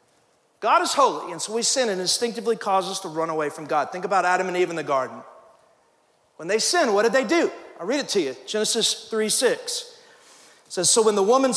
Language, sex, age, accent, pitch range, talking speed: English, male, 40-59, American, 175-250 Hz, 225 wpm